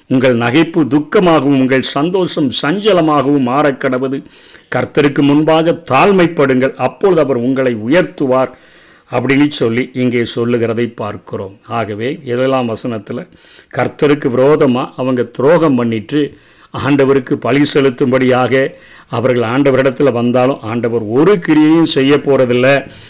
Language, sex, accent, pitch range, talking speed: Tamil, male, native, 130-165 Hz, 100 wpm